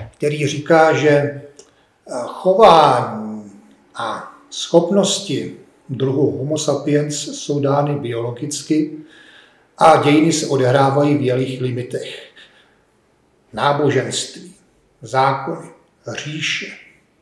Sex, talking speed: male, 75 wpm